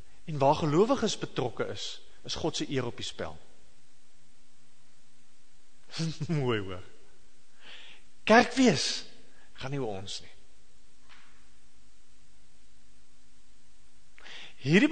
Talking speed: 80 wpm